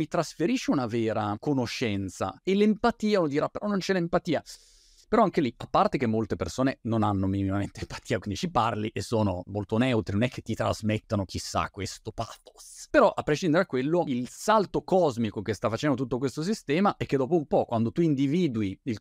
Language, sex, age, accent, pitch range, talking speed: Italian, male, 30-49, native, 110-155 Hz, 195 wpm